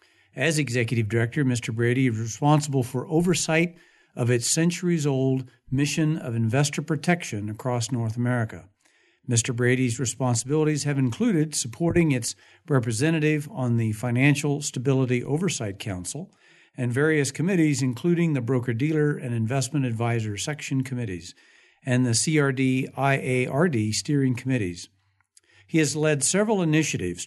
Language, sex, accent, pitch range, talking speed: English, male, American, 120-150 Hz, 120 wpm